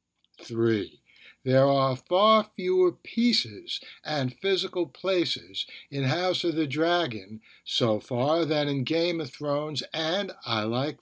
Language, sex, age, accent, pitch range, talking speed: English, male, 60-79, American, 125-160 Hz, 130 wpm